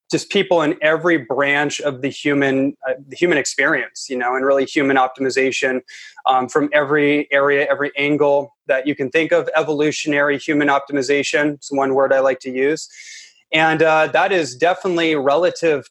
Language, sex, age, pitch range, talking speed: English, male, 20-39, 140-160 Hz, 170 wpm